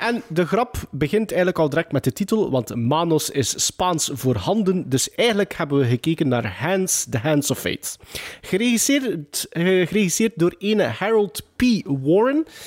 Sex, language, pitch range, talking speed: male, Dutch, 135-200 Hz, 160 wpm